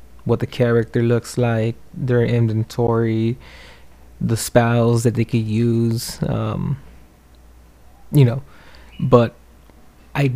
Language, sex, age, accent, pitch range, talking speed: English, male, 20-39, American, 115-130 Hz, 100 wpm